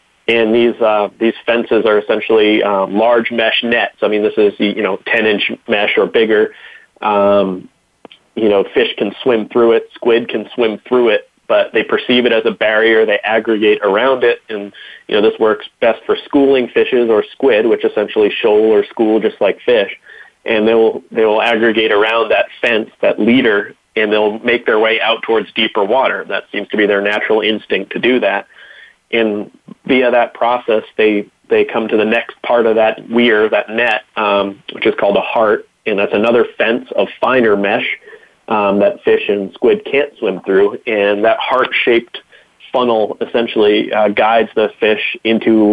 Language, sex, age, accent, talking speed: English, male, 30-49, American, 185 wpm